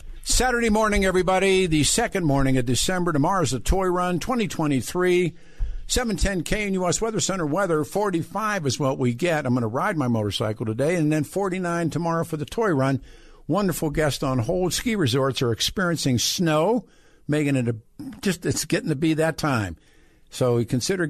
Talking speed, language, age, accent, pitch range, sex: 170 wpm, English, 50-69, American, 130-170 Hz, male